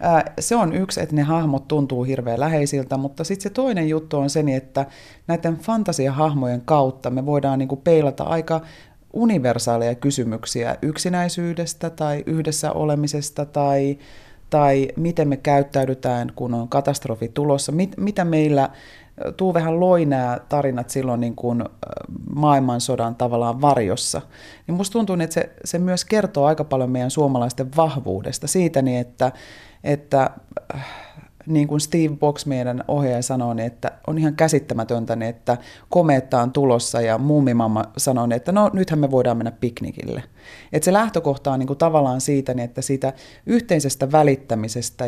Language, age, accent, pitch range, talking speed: Finnish, 30-49, native, 125-155 Hz, 145 wpm